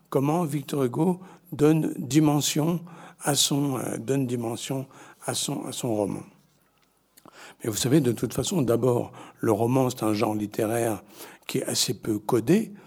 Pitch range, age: 110-150 Hz, 60-79